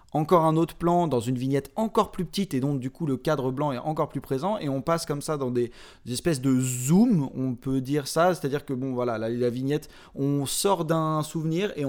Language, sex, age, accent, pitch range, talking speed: French, male, 20-39, French, 125-155 Hz, 235 wpm